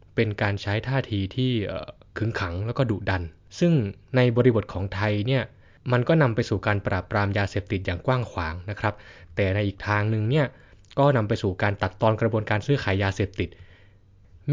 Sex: male